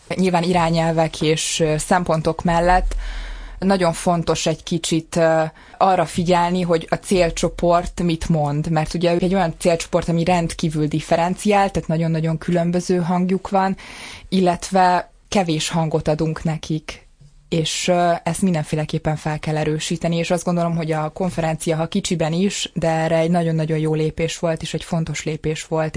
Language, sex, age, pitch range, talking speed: Hungarian, female, 20-39, 155-175 Hz, 140 wpm